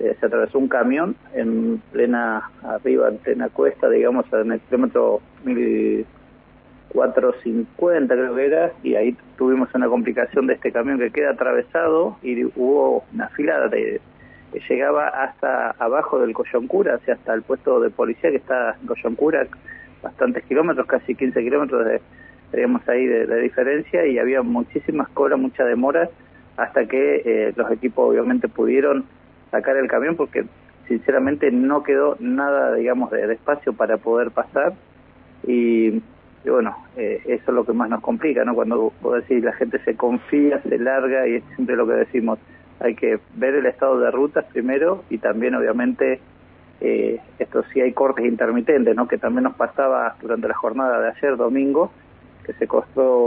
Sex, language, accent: male, Spanish, Argentinian